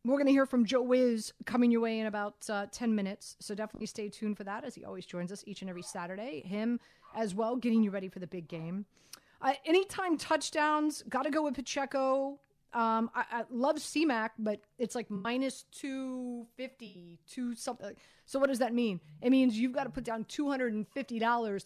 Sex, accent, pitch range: female, American, 215-260 Hz